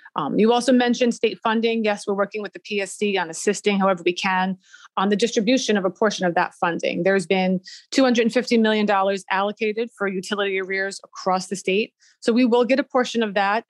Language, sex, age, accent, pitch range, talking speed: English, female, 30-49, American, 190-225 Hz, 195 wpm